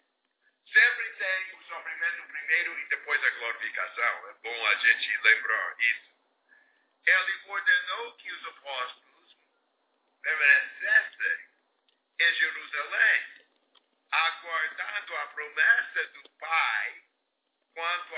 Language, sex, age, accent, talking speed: English, male, 50-69, American, 95 wpm